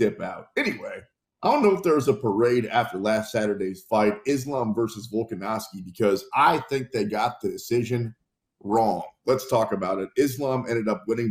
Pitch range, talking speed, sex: 105-140 Hz, 180 wpm, male